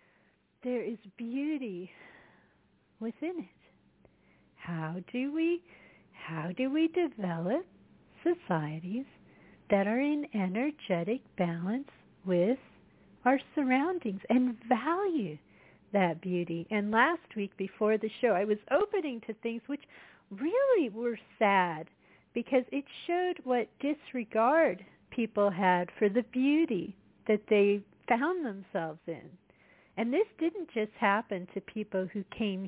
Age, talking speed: 50-69, 120 wpm